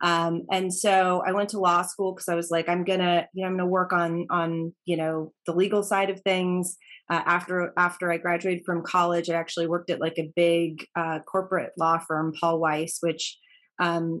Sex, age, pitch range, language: female, 30-49, 165-185 Hz, English